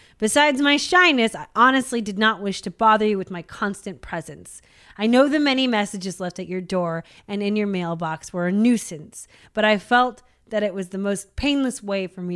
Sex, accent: female, American